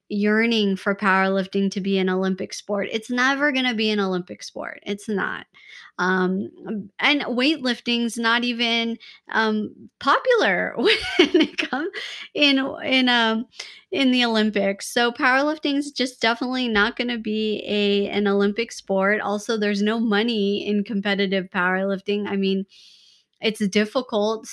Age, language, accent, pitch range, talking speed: 20-39, English, American, 200-255 Hz, 135 wpm